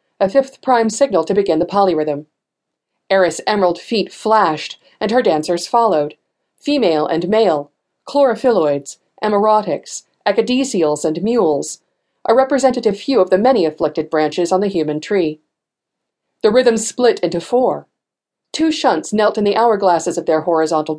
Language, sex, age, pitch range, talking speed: English, female, 40-59, 165-235 Hz, 145 wpm